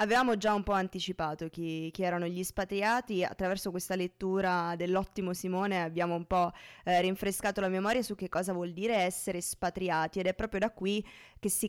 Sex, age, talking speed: female, 20-39, 185 wpm